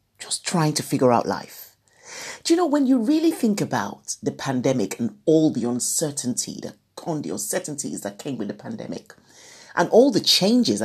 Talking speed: 175 wpm